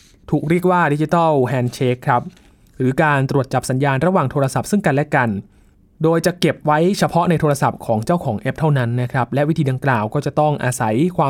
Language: Thai